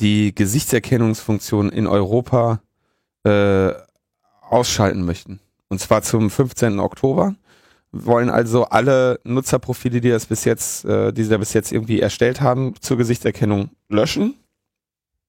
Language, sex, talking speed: German, male, 130 wpm